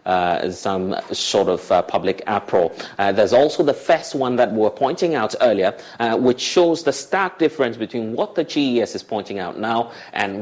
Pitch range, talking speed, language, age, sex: 110-145 Hz, 195 wpm, English, 30-49, male